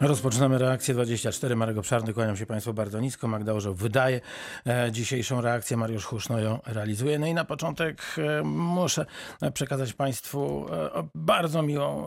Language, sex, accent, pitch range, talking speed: Polish, male, native, 125-150 Hz, 135 wpm